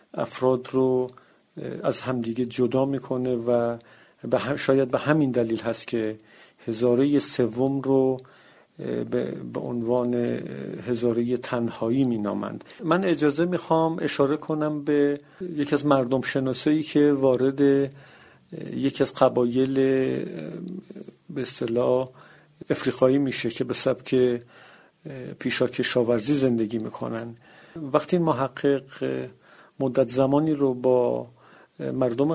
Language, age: Persian, 50-69